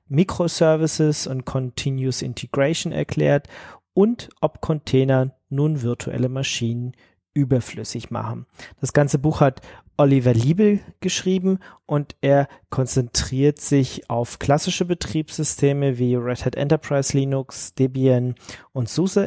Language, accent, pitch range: German, German, 125-140 Hz